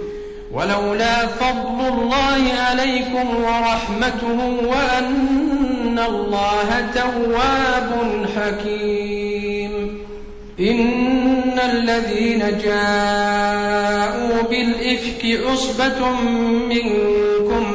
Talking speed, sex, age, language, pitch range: 50 wpm, male, 50-69, Arabic, 205-250 Hz